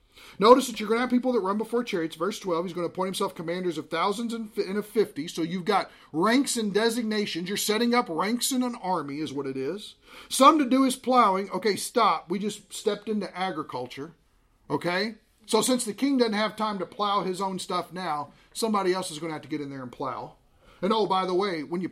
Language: English